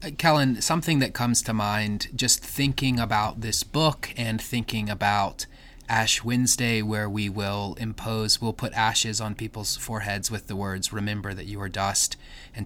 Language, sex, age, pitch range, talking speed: English, male, 20-39, 105-125 Hz, 165 wpm